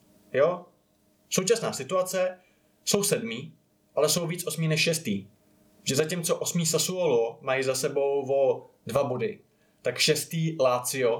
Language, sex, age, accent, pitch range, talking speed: Czech, male, 20-39, native, 130-175 Hz, 130 wpm